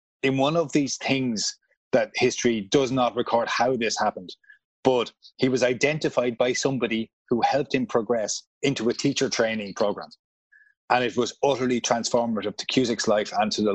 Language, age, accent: English, 30-49, Irish